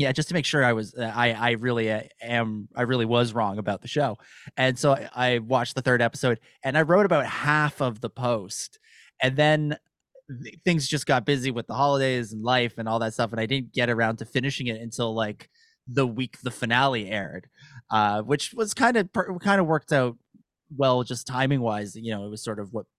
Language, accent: English, American